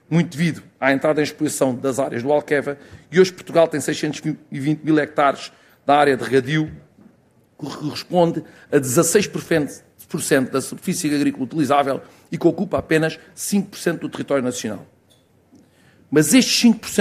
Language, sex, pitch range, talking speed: Portuguese, male, 140-170 Hz, 140 wpm